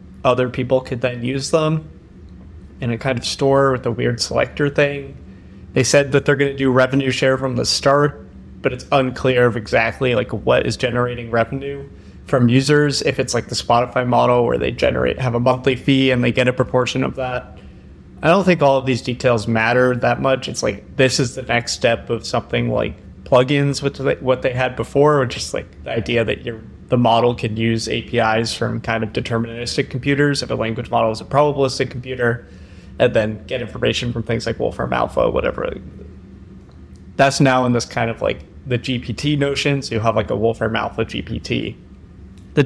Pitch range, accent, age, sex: 115-140 Hz, American, 30-49, male